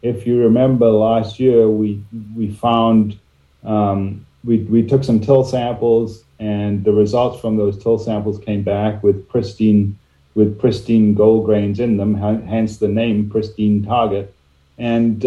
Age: 40-59